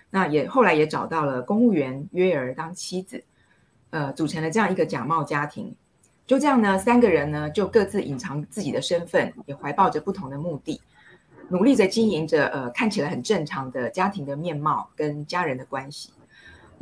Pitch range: 150-225 Hz